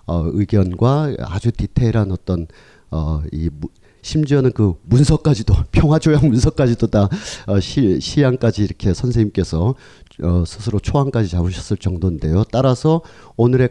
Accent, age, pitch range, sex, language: native, 40-59, 95-135 Hz, male, Korean